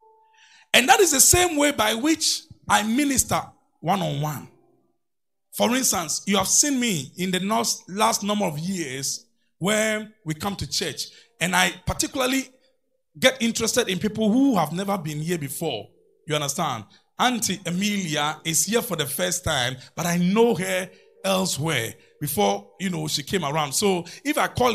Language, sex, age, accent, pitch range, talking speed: English, male, 30-49, Nigerian, 155-250 Hz, 165 wpm